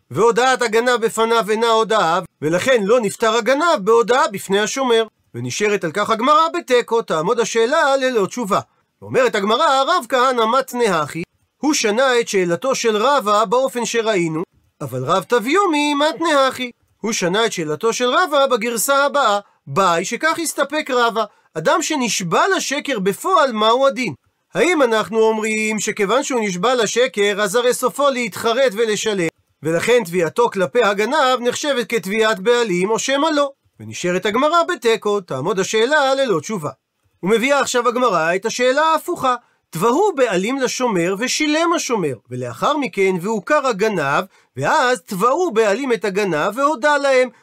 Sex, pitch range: male, 200-270 Hz